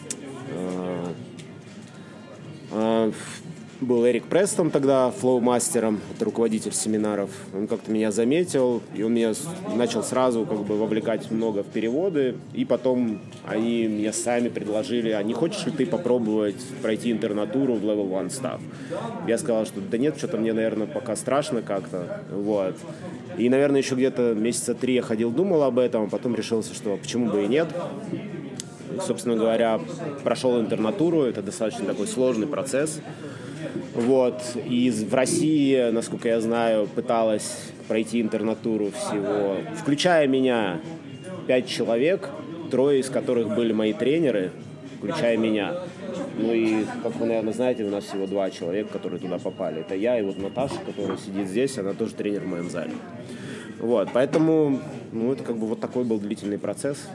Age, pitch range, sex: 20-39, 110-125 Hz, male